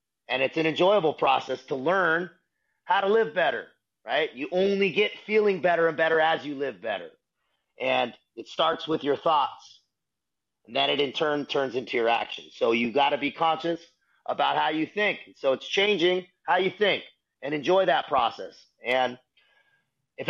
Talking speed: 175 wpm